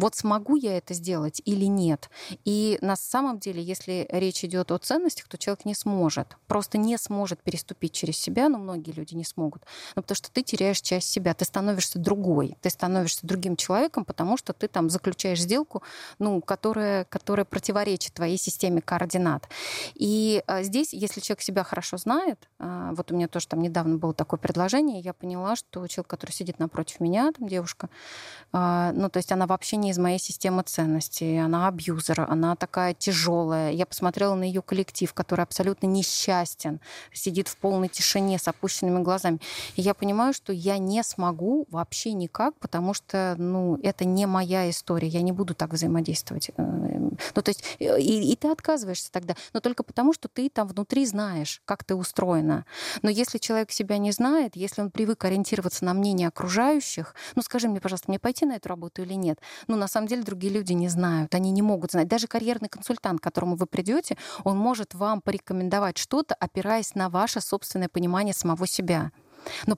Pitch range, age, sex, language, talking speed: 175-210 Hz, 30-49, female, Russian, 180 wpm